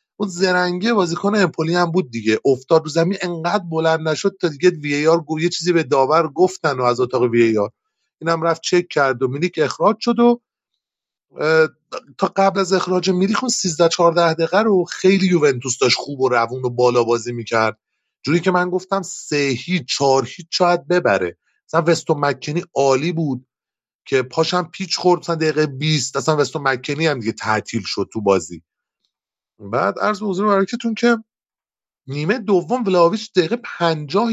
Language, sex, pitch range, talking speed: Persian, male, 145-195 Hz, 165 wpm